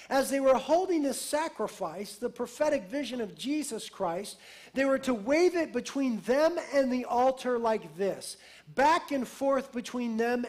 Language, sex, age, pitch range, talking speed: English, male, 50-69, 225-285 Hz, 165 wpm